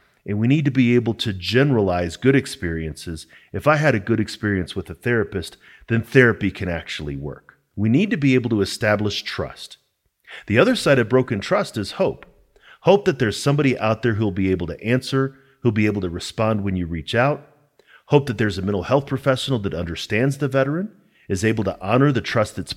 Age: 40-59